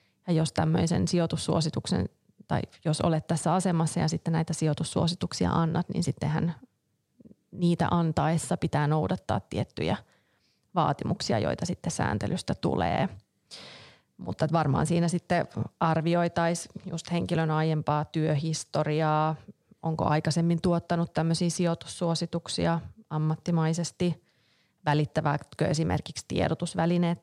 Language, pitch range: Finnish, 155-170 Hz